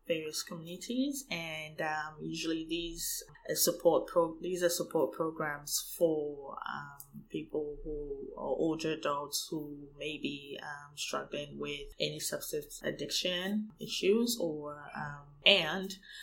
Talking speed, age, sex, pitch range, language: 125 wpm, 20-39, female, 155-185 Hz, English